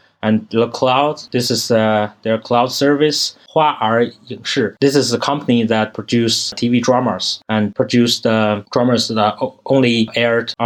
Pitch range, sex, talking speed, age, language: 110-125 Hz, male, 160 wpm, 20-39, English